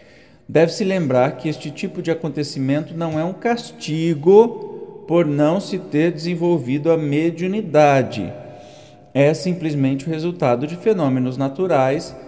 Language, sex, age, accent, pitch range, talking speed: Portuguese, male, 50-69, Brazilian, 125-180 Hz, 120 wpm